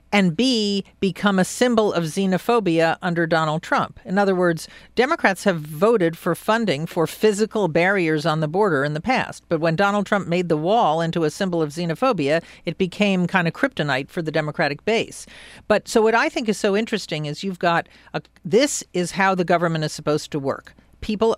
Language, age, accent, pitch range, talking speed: English, 50-69, American, 165-215 Hz, 195 wpm